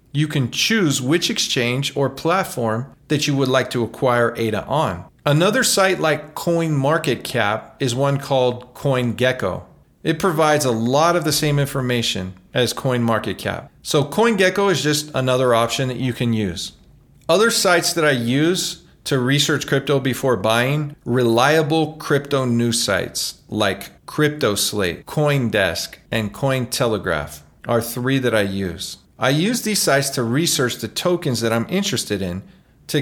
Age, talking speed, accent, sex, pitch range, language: 40-59, 145 wpm, American, male, 115-155 Hz, English